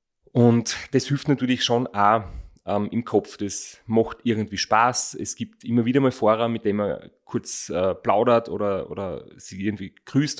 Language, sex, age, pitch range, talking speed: German, male, 30-49, 105-125 Hz, 175 wpm